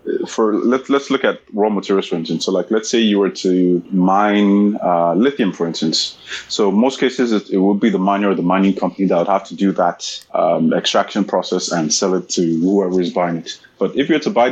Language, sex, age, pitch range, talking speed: English, male, 20-39, 95-110 Hz, 235 wpm